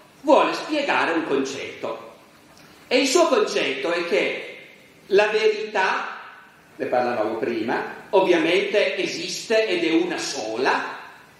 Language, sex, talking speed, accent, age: Italian, male, 110 wpm, native, 40-59